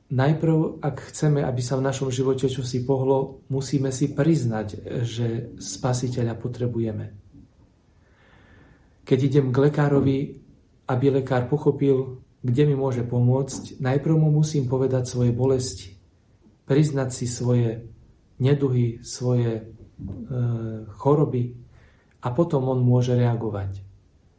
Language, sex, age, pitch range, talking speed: Slovak, male, 40-59, 115-135 Hz, 115 wpm